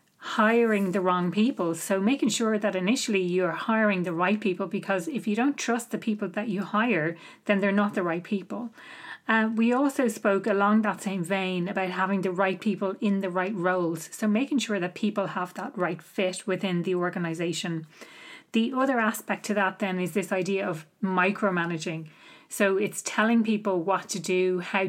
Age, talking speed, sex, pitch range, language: 30-49, 190 wpm, female, 180-210 Hz, English